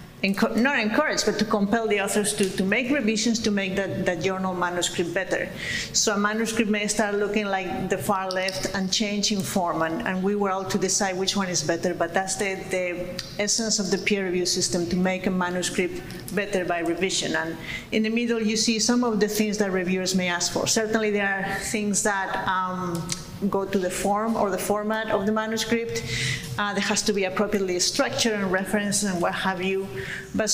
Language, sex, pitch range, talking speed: English, female, 190-215 Hz, 205 wpm